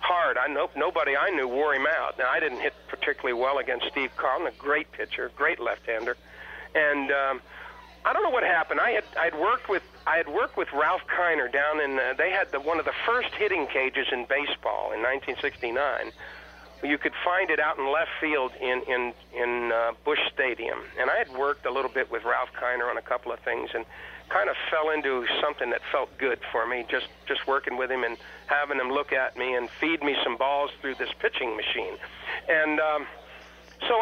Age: 50-69